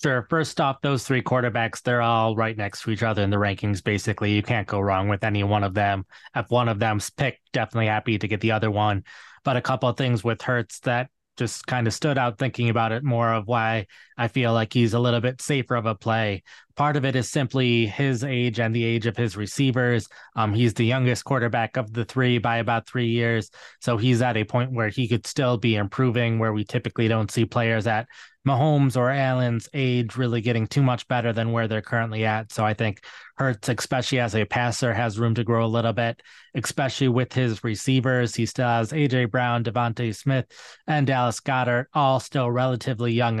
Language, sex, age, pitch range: English, male, 20-39, 115-130 Hz